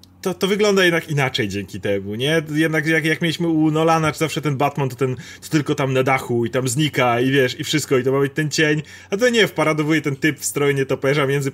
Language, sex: Polish, male